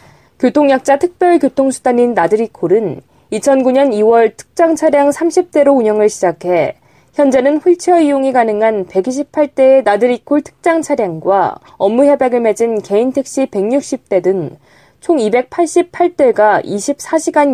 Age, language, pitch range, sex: 20-39, Korean, 215-285 Hz, female